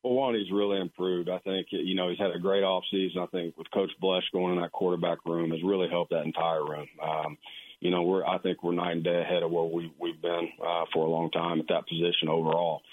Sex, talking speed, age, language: male, 250 wpm, 40-59, English